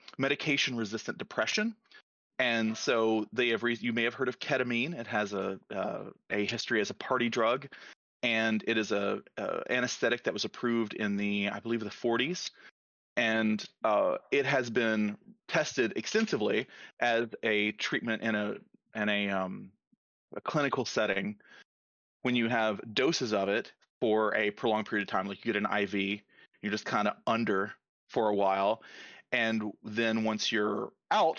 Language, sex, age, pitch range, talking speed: English, male, 30-49, 105-120 Hz, 165 wpm